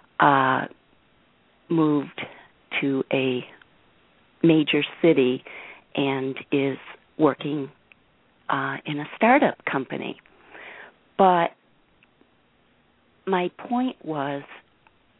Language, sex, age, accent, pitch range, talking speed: English, female, 50-69, American, 135-170 Hz, 70 wpm